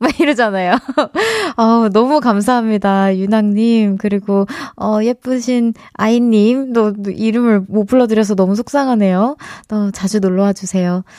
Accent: native